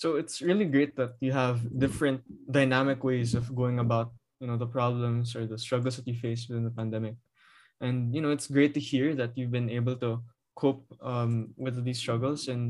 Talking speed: 210 wpm